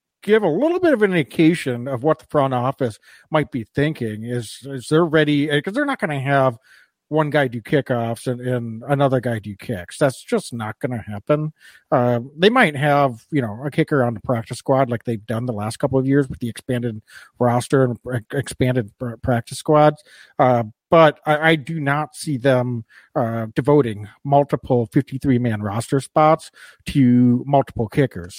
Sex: male